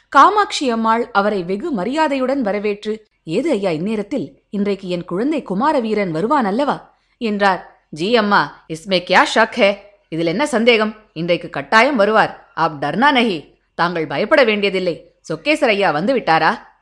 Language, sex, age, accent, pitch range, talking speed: Tamil, female, 20-39, native, 190-270 Hz, 120 wpm